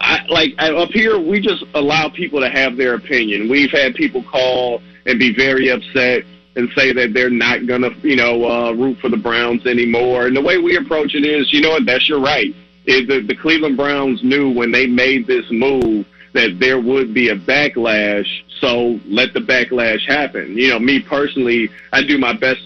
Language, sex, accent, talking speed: English, male, American, 200 wpm